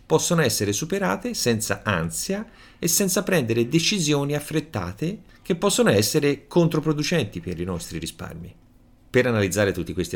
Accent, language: native, Italian